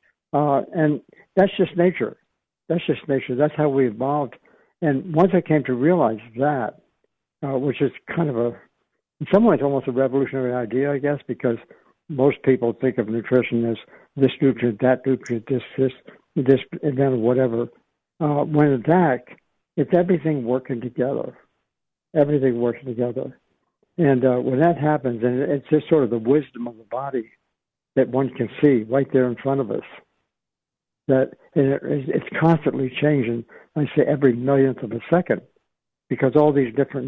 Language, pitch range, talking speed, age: English, 125-150 Hz, 165 wpm, 60-79